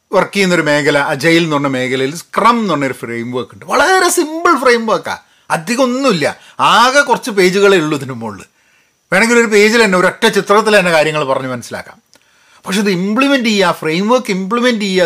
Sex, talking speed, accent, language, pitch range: male, 160 wpm, native, Malayalam, 150-235 Hz